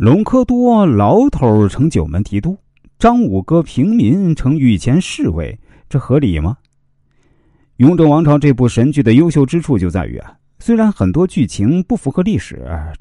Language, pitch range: Chinese, 95-155 Hz